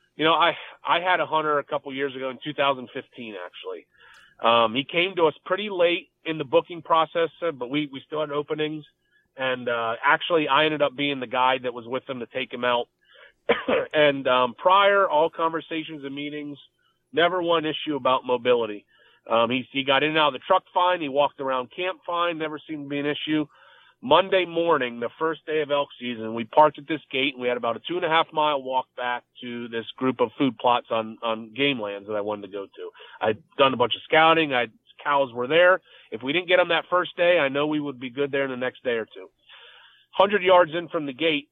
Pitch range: 130-165 Hz